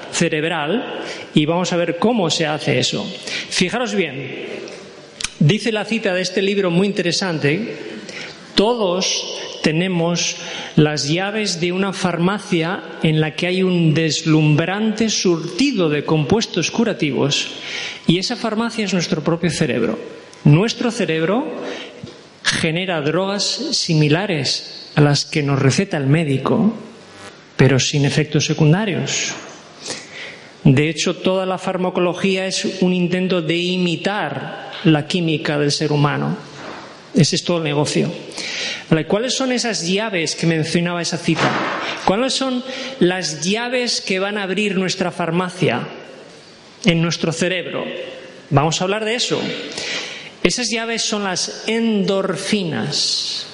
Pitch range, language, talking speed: 160-200 Hz, Spanish, 125 wpm